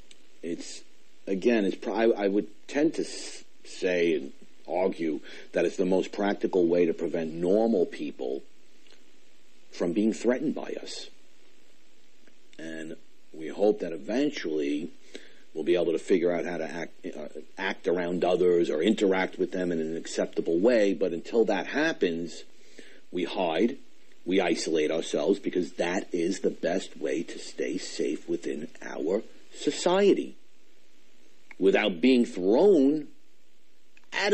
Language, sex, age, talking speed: English, male, 50-69, 135 wpm